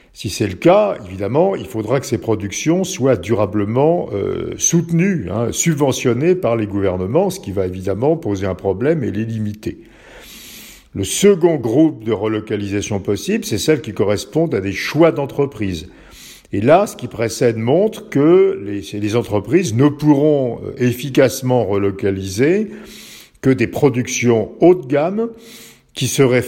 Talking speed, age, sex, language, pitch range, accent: 145 wpm, 50-69, male, French, 100-155 Hz, French